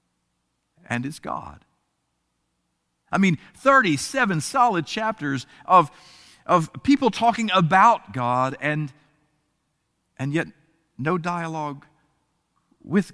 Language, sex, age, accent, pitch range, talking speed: English, male, 50-69, American, 115-155 Hz, 90 wpm